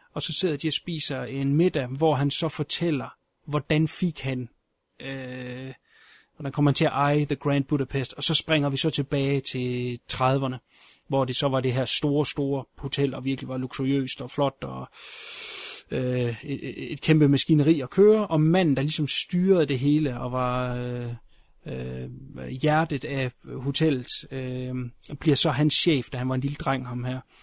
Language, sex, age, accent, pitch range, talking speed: Danish, male, 30-49, native, 130-160 Hz, 180 wpm